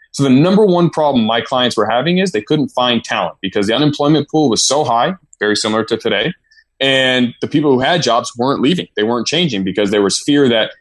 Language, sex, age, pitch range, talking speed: English, male, 20-39, 110-145 Hz, 230 wpm